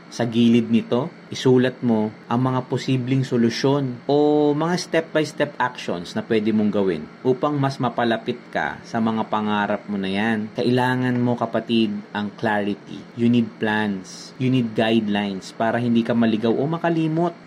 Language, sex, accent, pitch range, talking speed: Filipino, male, native, 105-130 Hz, 150 wpm